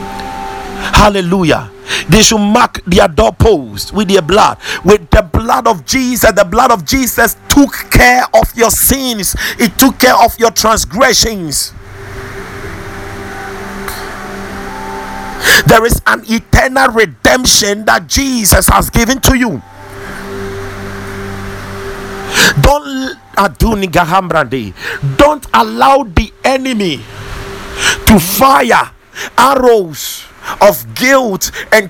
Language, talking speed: English, 100 wpm